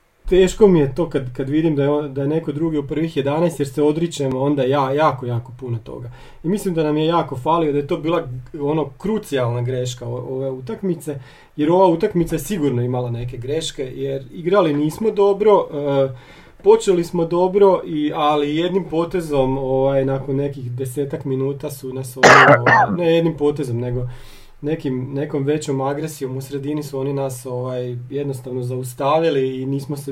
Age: 40-59